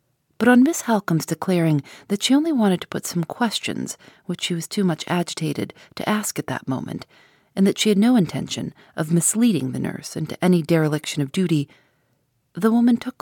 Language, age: English, 40-59